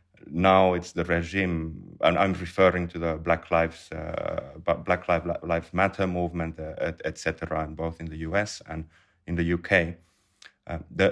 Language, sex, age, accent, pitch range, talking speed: English, male, 30-49, Finnish, 80-90 Hz, 130 wpm